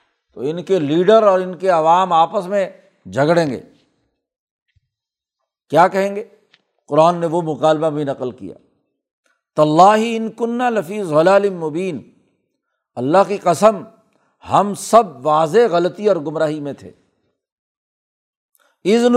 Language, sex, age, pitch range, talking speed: Urdu, male, 60-79, 160-210 Hz, 120 wpm